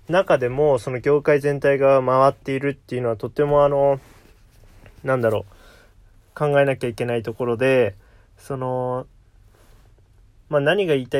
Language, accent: Japanese, native